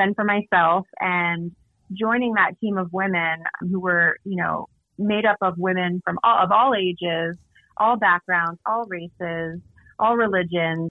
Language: English